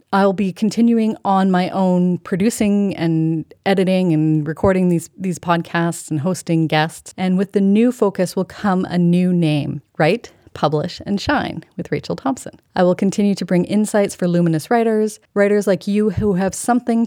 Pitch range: 170-200 Hz